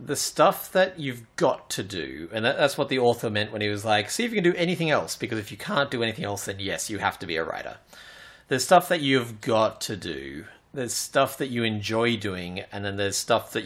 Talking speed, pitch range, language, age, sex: 250 wpm, 100-135 Hz, English, 30-49, male